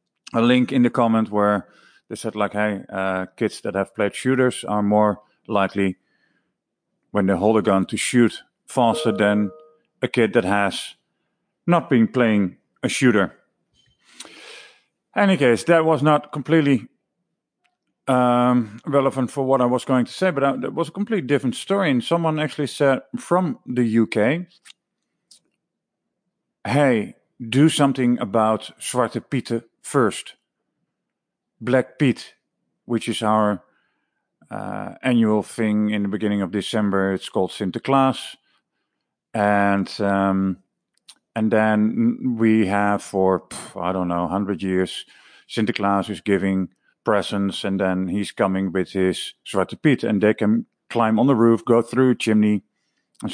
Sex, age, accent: male, 50-69, Dutch